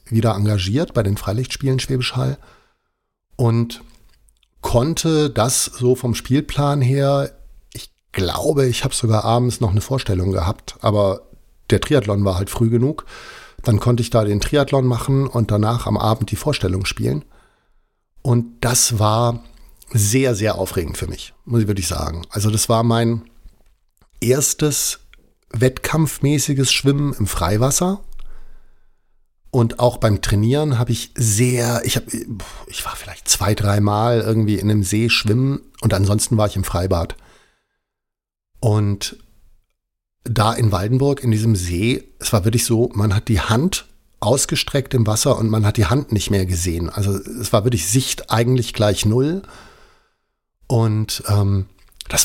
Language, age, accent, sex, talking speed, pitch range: German, 50-69, German, male, 145 wpm, 105-125 Hz